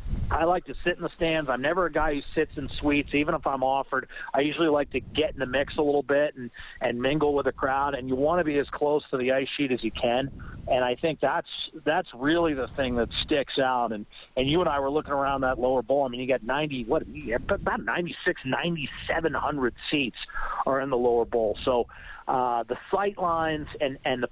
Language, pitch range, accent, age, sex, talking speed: English, 130-165 Hz, American, 40-59, male, 240 wpm